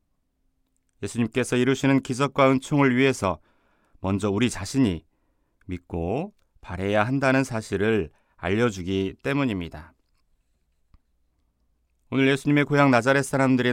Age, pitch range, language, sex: 30-49, 80-125 Hz, Korean, male